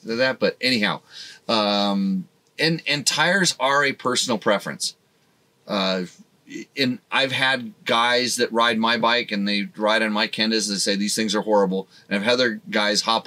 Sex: male